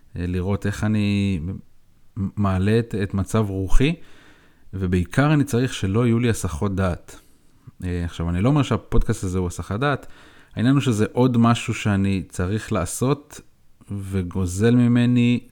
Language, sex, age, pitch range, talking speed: Hebrew, male, 30-49, 95-120 Hz, 135 wpm